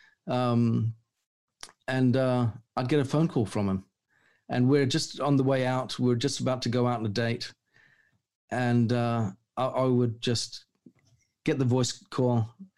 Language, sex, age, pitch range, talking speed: English, male, 50-69, 115-155 Hz, 170 wpm